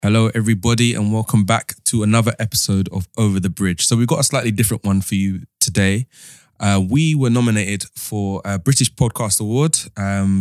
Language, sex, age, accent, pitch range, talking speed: English, male, 20-39, British, 100-120 Hz, 185 wpm